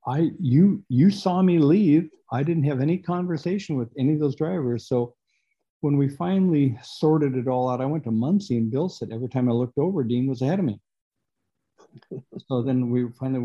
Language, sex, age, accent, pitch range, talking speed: English, male, 60-79, American, 115-150 Hz, 200 wpm